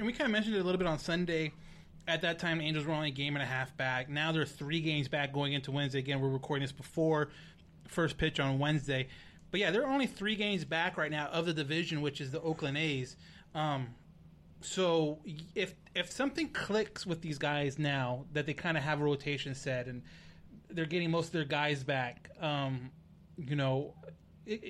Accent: American